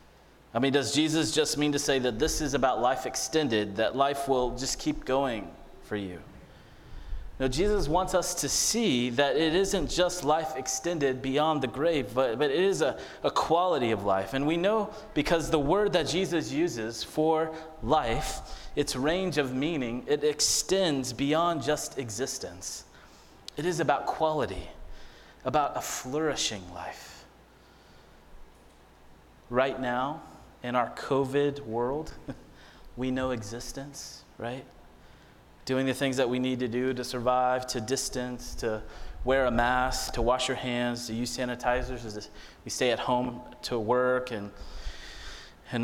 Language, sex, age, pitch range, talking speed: English, male, 30-49, 120-150 Hz, 150 wpm